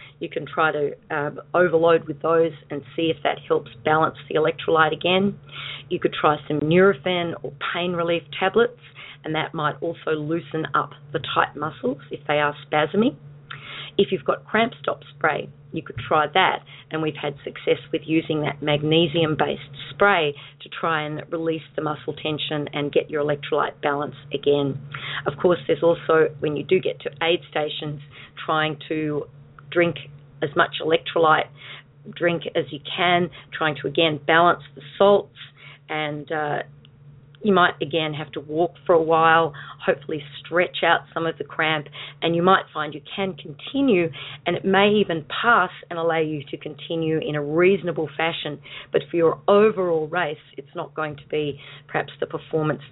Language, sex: English, female